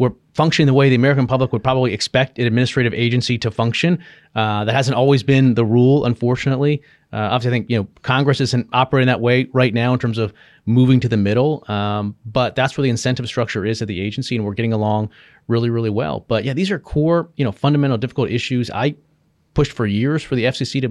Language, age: English, 30-49